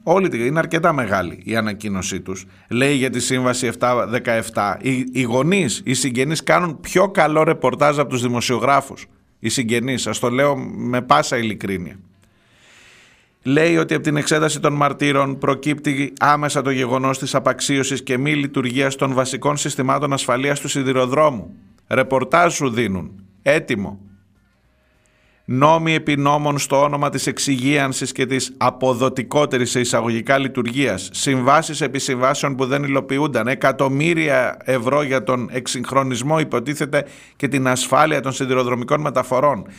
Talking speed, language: 130 wpm, Greek